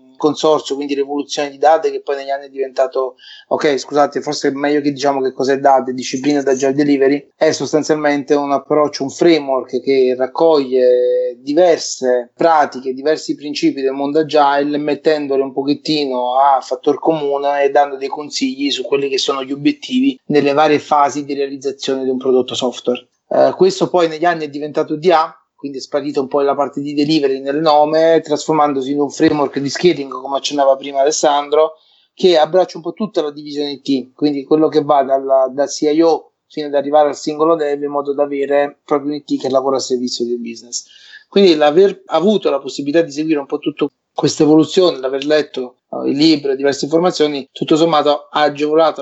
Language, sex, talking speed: Italian, male, 185 wpm